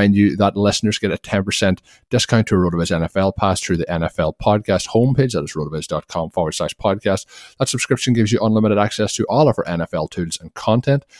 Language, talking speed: English, 200 wpm